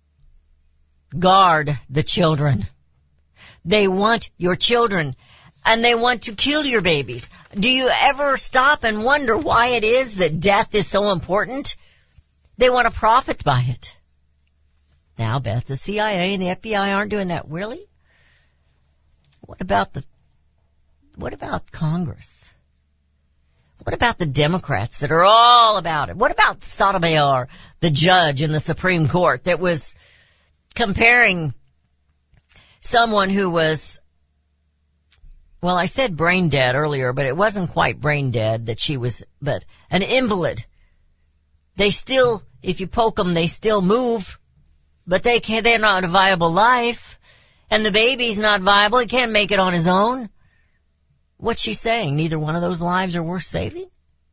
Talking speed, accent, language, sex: 150 wpm, American, English, female